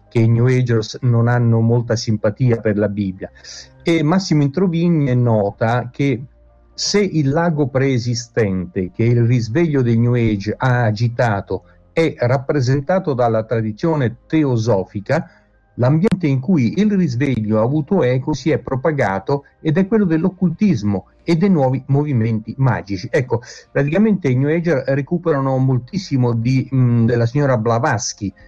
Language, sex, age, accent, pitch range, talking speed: Italian, male, 50-69, native, 115-150 Hz, 135 wpm